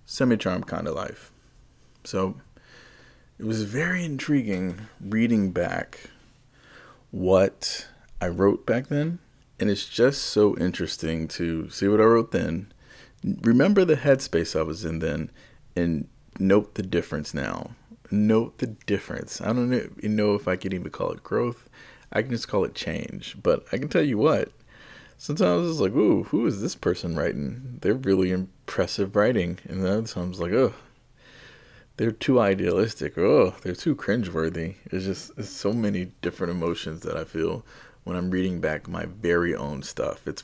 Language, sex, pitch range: English, male, 90-120 Hz